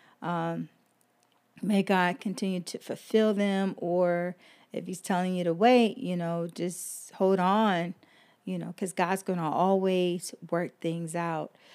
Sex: female